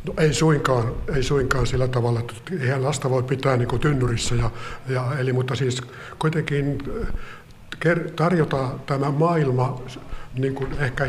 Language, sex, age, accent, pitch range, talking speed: Finnish, male, 60-79, native, 125-145 Hz, 135 wpm